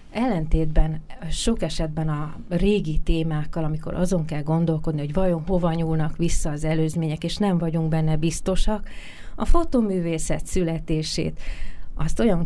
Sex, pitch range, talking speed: female, 155-175 Hz, 130 wpm